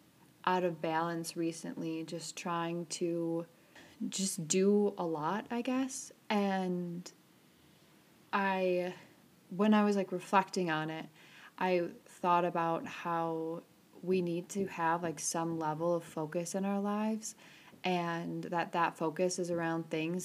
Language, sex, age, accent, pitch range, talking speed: English, female, 20-39, American, 165-185 Hz, 135 wpm